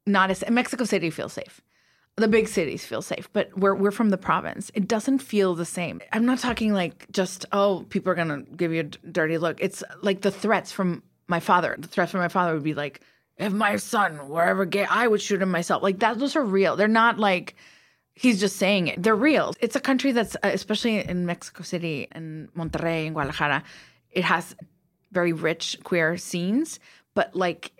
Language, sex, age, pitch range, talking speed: English, female, 30-49, 170-215 Hz, 210 wpm